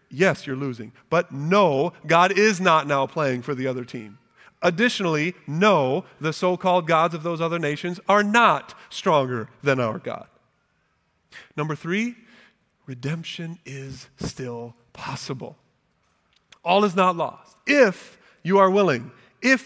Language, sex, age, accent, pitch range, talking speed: English, male, 40-59, American, 130-175 Hz, 135 wpm